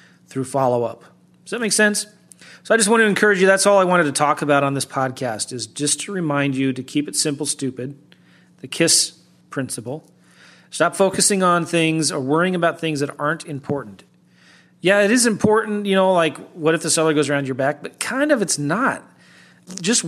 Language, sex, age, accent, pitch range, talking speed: English, male, 40-59, American, 135-185 Hz, 205 wpm